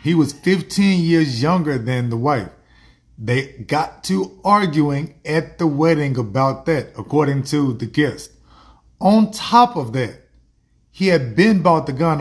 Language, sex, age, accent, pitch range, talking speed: English, male, 30-49, American, 130-165 Hz, 150 wpm